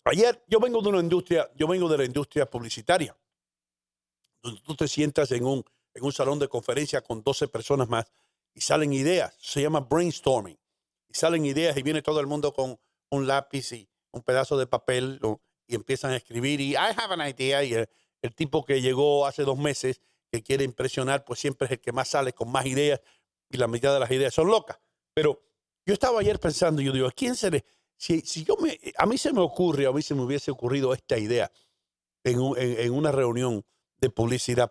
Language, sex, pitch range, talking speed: English, male, 125-160 Hz, 210 wpm